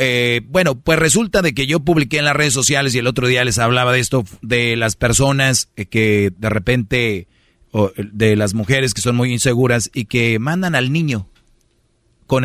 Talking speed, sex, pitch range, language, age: 195 wpm, male, 115-135 Hz, Spanish, 40-59